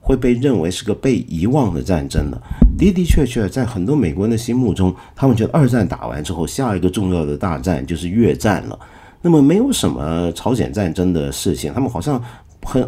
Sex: male